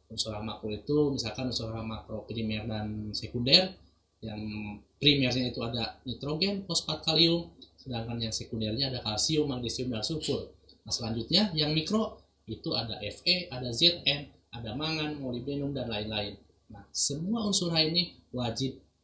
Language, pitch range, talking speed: Indonesian, 110-155 Hz, 140 wpm